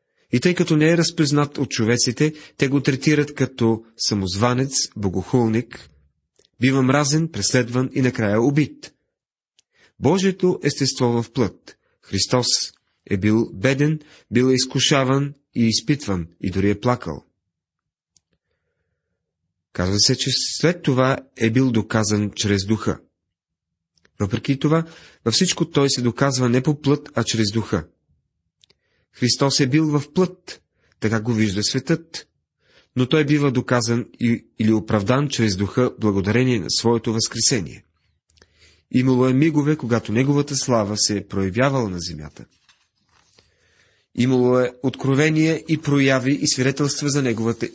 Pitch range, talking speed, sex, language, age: 105-140 Hz, 125 wpm, male, Bulgarian, 30-49